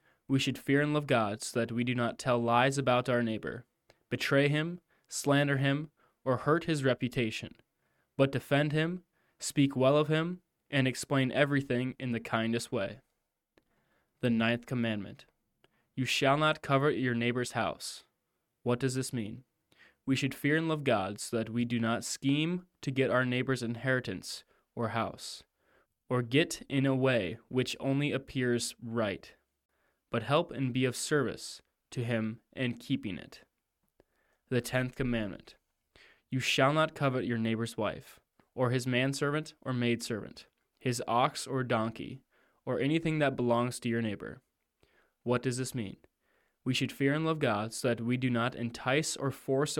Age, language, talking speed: 20-39, English, 165 wpm